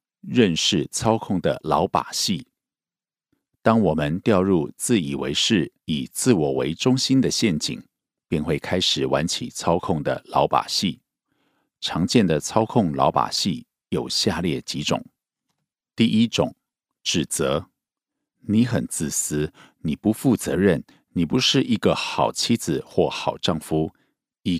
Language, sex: Korean, male